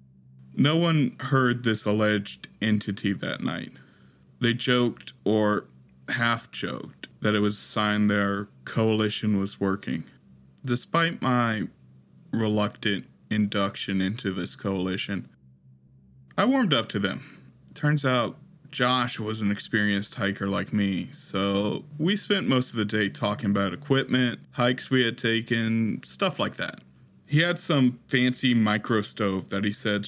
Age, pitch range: 20-39, 100-125 Hz